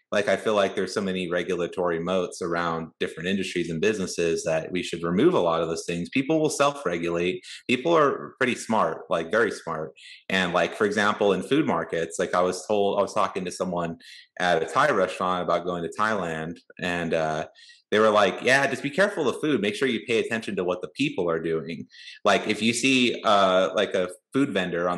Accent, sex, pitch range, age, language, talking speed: American, male, 85-110 Hz, 30-49, English, 215 wpm